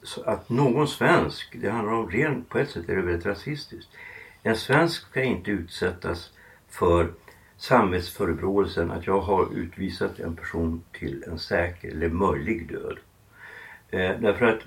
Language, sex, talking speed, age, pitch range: Swedish, male, 150 wpm, 60-79, 85-120 Hz